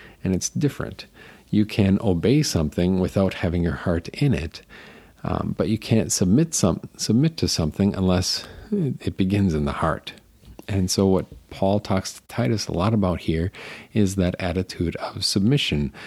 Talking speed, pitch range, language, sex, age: 160 wpm, 85-100 Hz, English, male, 40-59